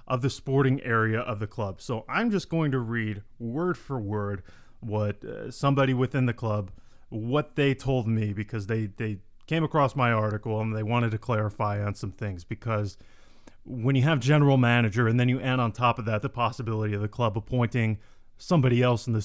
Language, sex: English, male